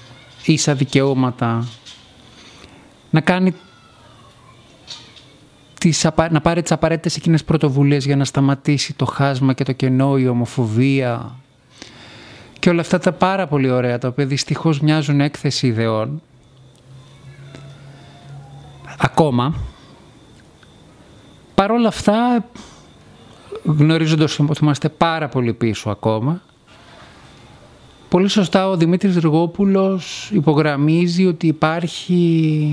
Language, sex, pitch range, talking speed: Greek, male, 130-170 Hz, 95 wpm